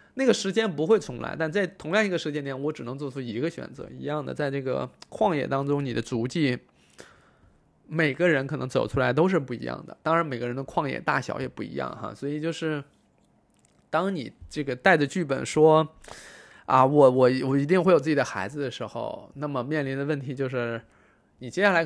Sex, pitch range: male, 135-175 Hz